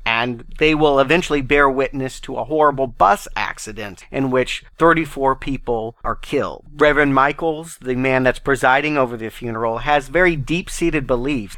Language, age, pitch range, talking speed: English, 40-59, 120-150 Hz, 155 wpm